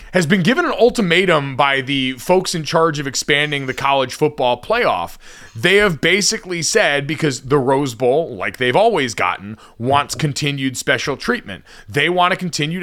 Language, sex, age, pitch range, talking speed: English, male, 30-49, 135-185 Hz, 170 wpm